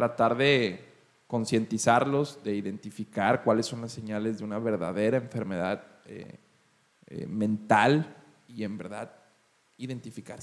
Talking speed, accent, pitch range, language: 115 wpm, Mexican, 110-130 Hz, Spanish